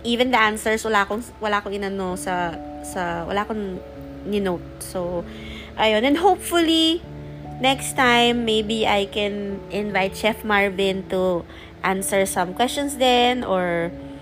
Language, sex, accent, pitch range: Filipino, female, native, 180-225 Hz